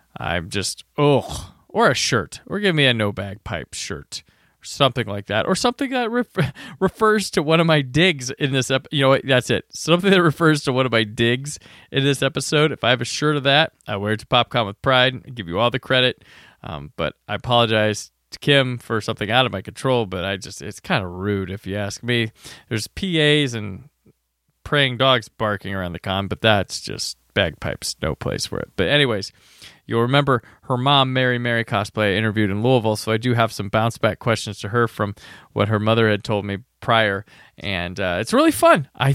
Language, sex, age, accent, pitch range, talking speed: English, male, 20-39, American, 100-135 Hz, 220 wpm